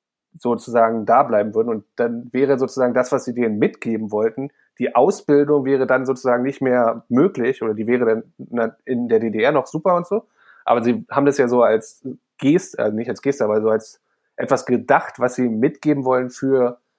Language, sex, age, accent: German, male, 30-49, German